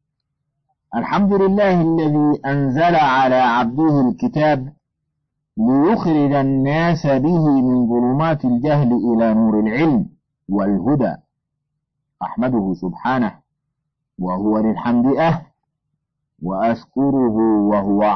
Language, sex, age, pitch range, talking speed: Arabic, male, 50-69, 120-160 Hz, 80 wpm